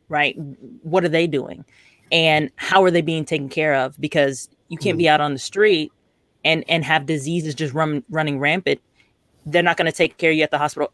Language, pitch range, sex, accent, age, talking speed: English, 140-170 Hz, female, American, 20-39, 220 wpm